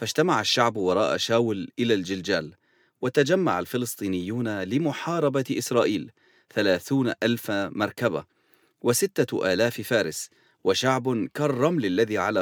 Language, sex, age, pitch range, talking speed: English, male, 40-59, 110-140 Hz, 95 wpm